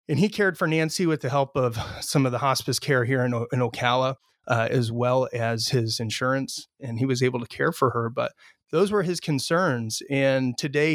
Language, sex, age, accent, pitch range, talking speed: English, male, 30-49, American, 120-140 Hz, 220 wpm